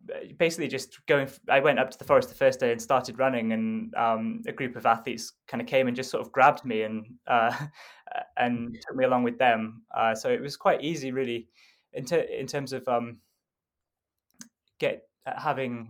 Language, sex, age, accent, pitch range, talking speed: English, male, 10-29, British, 115-130 Hz, 205 wpm